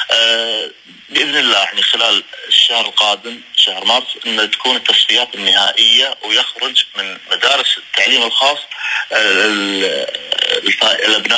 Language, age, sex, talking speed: Arabic, 30-49, male, 95 wpm